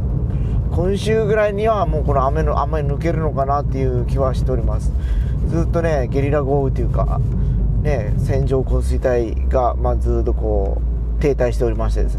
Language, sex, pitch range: Japanese, male, 95-135 Hz